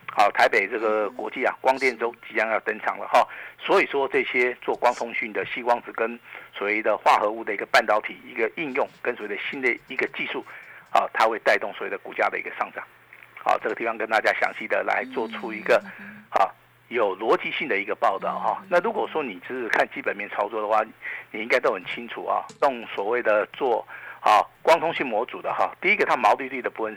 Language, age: Chinese, 50-69